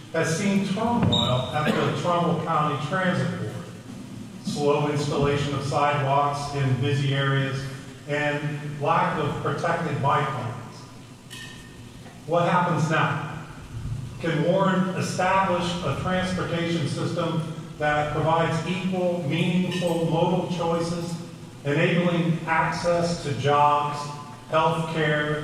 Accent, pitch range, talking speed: American, 145-175 Hz, 100 wpm